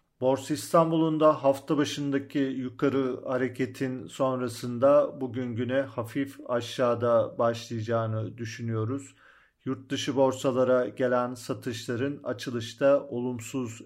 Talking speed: 80 wpm